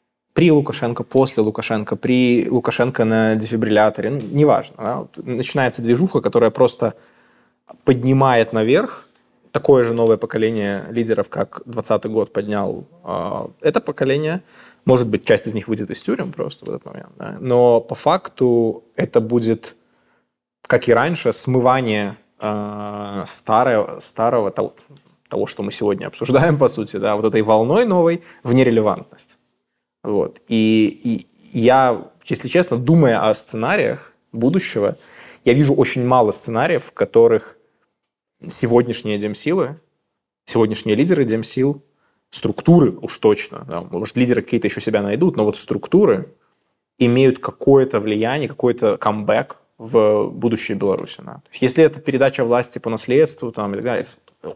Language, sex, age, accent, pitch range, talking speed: Russian, male, 20-39, native, 110-135 Hz, 130 wpm